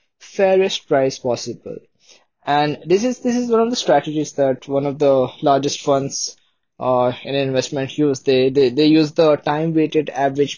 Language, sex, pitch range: English, male, 130-155 Hz